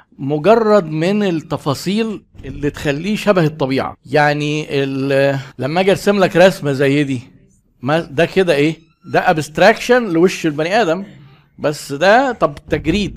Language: Arabic